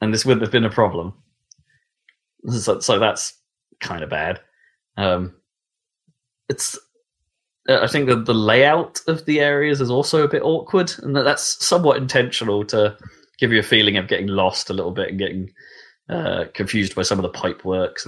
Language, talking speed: English, 175 wpm